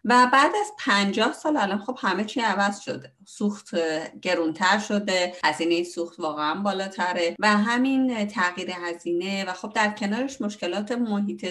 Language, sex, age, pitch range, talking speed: Persian, female, 30-49, 175-235 Hz, 145 wpm